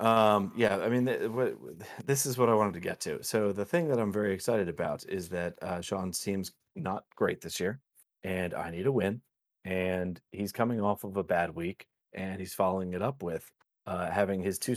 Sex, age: male, 30-49